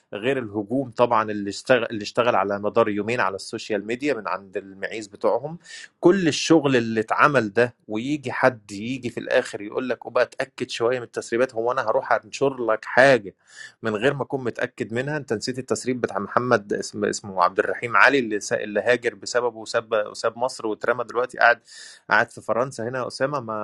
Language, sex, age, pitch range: Arabic, male, 20-39, 110-150 Hz